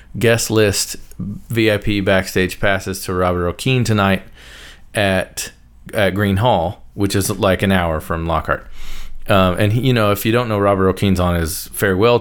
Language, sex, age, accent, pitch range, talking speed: English, male, 30-49, American, 95-130 Hz, 165 wpm